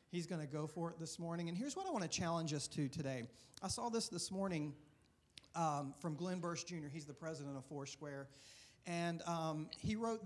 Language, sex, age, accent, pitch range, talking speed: English, male, 40-59, American, 155-195 Hz, 215 wpm